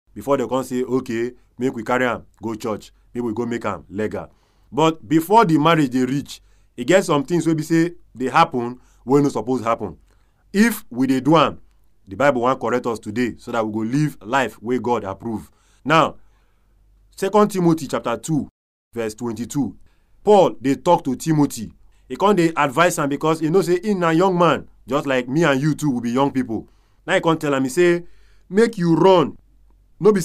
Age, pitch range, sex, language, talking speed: 30-49, 115-165 Hz, male, English, 200 wpm